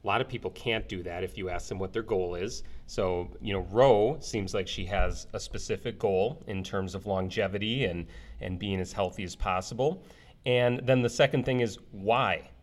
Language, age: English, 30-49